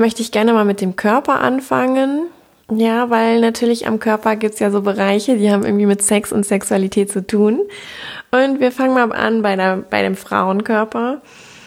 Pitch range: 195-225 Hz